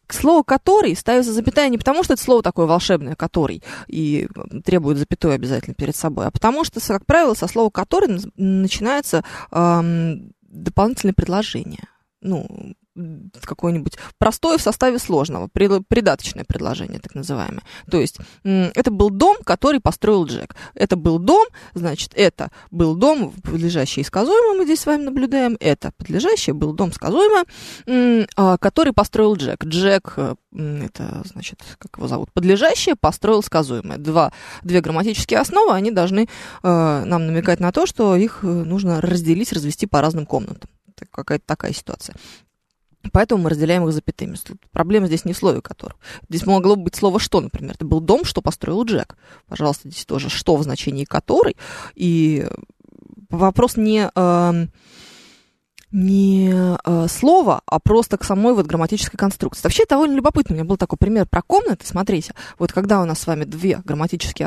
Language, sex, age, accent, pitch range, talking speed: Russian, female, 20-39, native, 165-230 Hz, 150 wpm